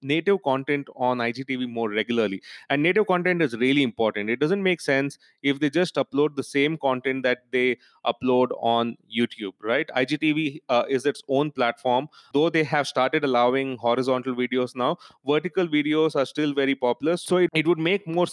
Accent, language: Indian, English